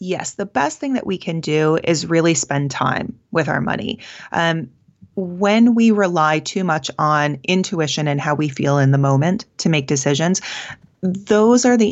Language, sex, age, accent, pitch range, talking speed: English, female, 30-49, American, 140-180 Hz, 180 wpm